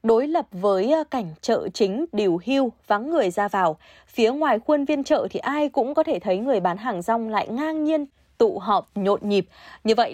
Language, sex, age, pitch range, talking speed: Vietnamese, female, 20-39, 200-275 Hz, 215 wpm